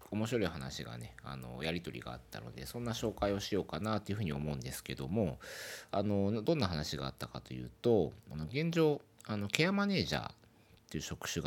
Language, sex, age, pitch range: Japanese, male, 40-59, 70-115 Hz